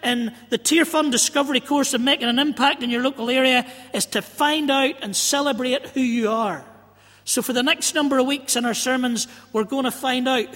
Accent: British